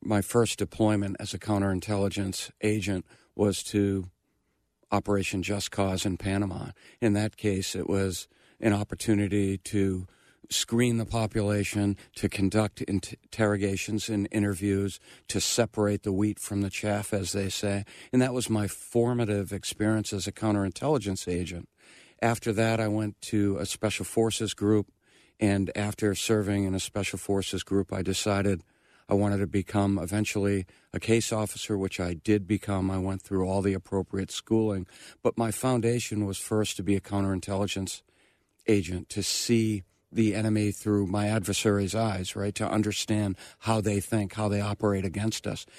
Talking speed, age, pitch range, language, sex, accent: 155 wpm, 50-69, 100-110 Hz, English, male, American